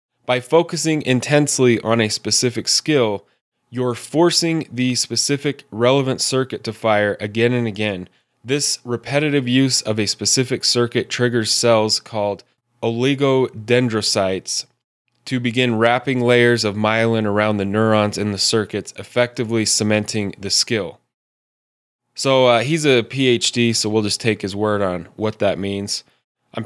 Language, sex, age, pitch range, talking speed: English, male, 10-29, 105-125 Hz, 135 wpm